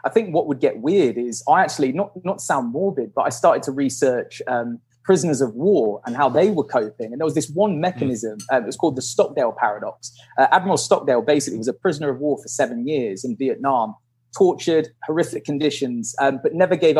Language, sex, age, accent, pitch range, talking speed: English, male, 20-39, British, 130-190 Hz, 215 wpm